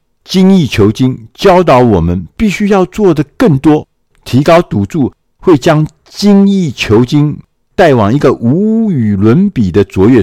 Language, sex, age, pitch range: Chinese, male, 50-69, 95-135 Hz